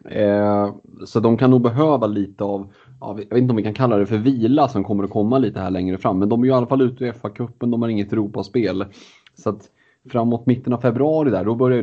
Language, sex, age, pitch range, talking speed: Swedish, male, 30-49, 95-125 Hz, 255 wpm